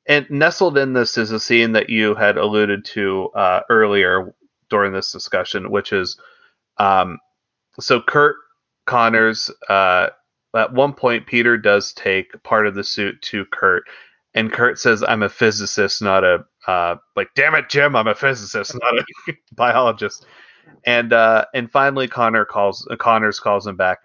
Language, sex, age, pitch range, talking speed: English, male, 30-49, 105-125 Hz, 165 wpm